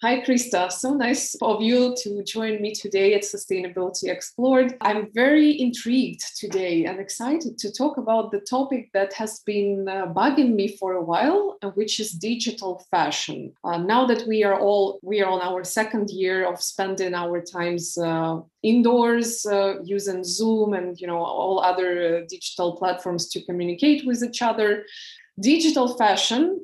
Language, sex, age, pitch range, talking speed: English, female, 20-39, 185-230 Hz, 160 wpm